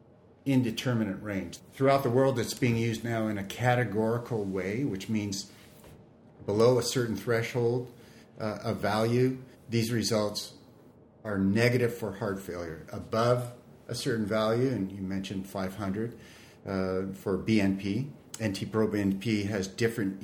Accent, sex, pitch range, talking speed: American, male, 100-120 Hz, 130 wpm